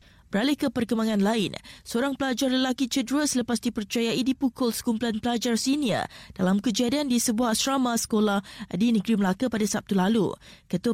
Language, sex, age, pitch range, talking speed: Malay, female, 20-39, 210-255 Hz, 150 wpm